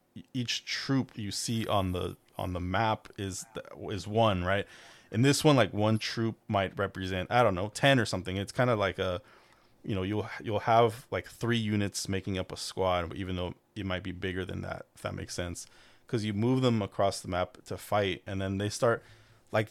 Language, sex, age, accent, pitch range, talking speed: English, male, 20-39, American, 95-115 Hz, 215 wpm